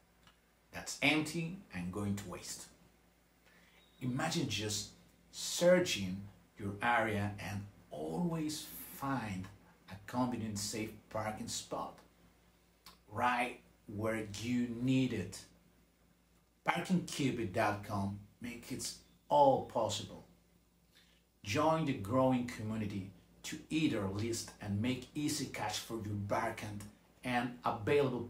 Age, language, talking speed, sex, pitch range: 50-69, English, 95 wpm, male, 95-125 Hz